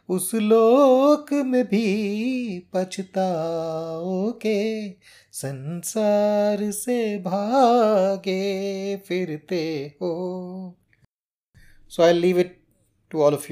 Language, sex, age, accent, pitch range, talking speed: Hindi, male, 30-49, native, 120-170 Hz, 80 wpm